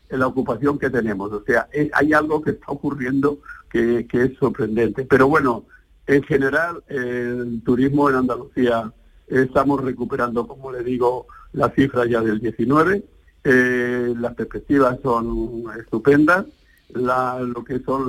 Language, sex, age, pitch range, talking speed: Spanish, male, 50-69, 115-135 Hz, 150 wpm